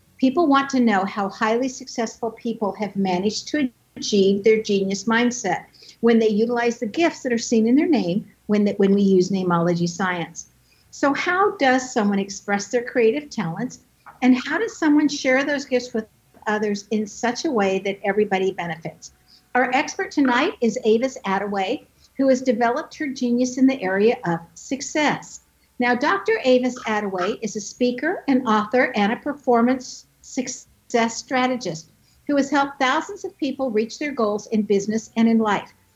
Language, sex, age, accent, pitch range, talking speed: English, female, 60-79, American, 205-265 Hz, 165 wpm